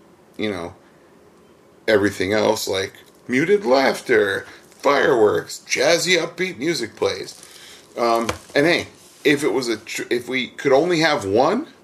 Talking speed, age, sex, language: 130 wpm, 40-59, male, English